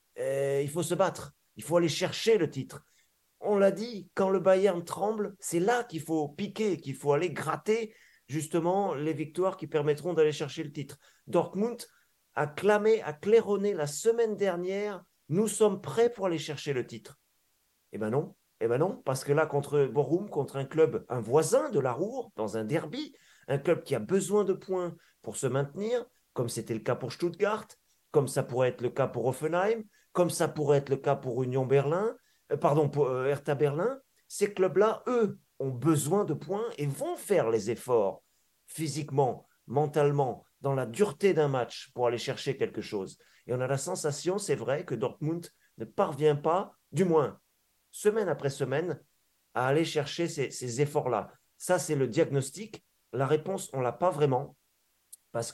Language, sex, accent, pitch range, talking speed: French, male, French, 140-195 Hz, 185 wpm